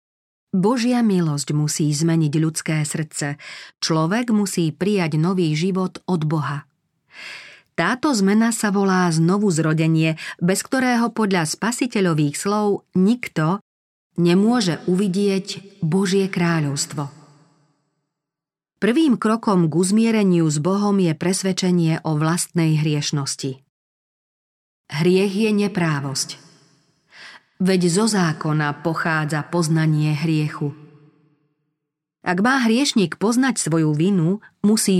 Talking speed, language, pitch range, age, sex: 95 wpm, Slovak, 155-195 Hz, 40-59, female